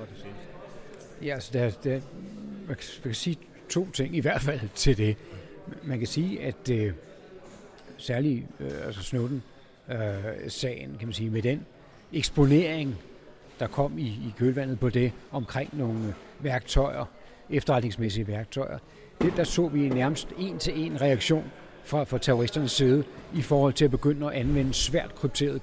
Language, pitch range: Danish, 125-155 Hz